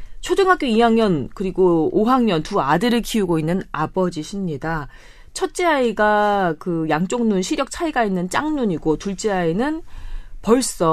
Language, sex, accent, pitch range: Korean, female, native, 160-235 Hz